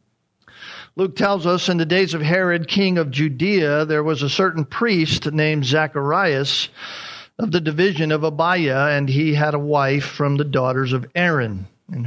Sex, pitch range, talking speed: male, 140-185 Hz, 170 wpm